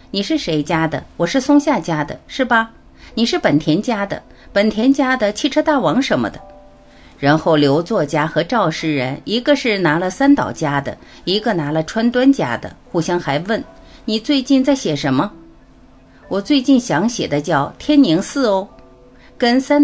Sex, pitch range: female, 155-260 Hz